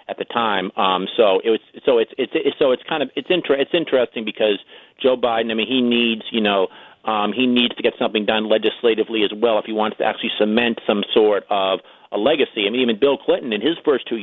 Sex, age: male, 40-59